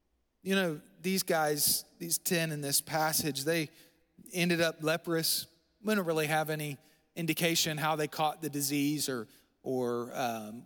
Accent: American